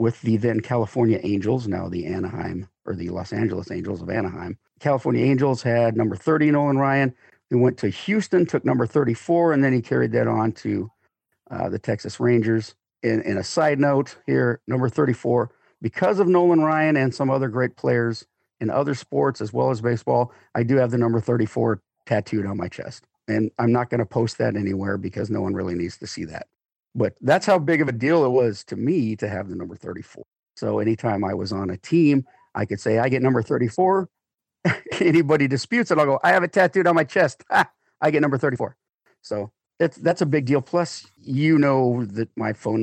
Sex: male